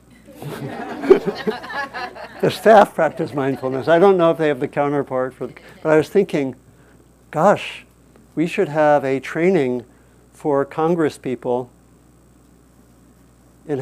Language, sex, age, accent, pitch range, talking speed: English, male, 50-69, American, 125-155 Hz, 120 wpm